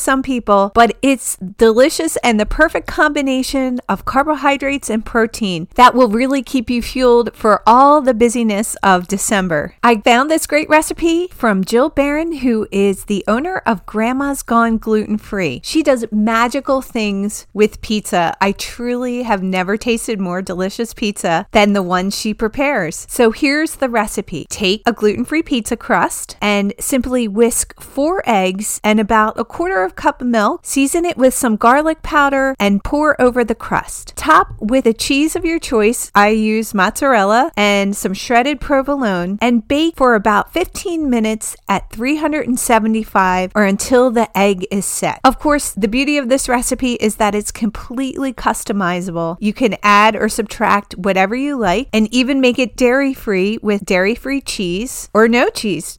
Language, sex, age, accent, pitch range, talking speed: English, female, 40-59, American, 205-265 Hz, 165 wpm